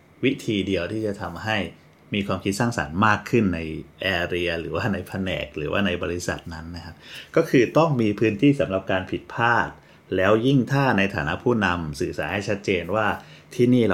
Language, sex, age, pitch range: Thai, male, 30-49, 85-110 Hz